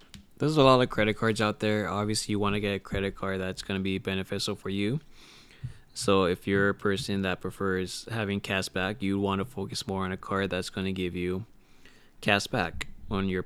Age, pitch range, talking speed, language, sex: 20-39, 95-105 Hz, 225 wpm, English, male